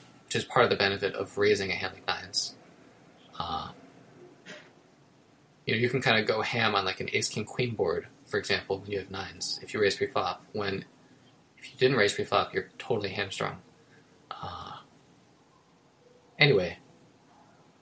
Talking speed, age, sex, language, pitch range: 170 wpm, 20-39, male, English, 125-165 Hz